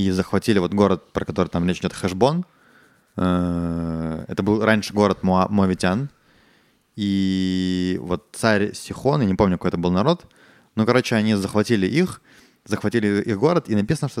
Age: 20-39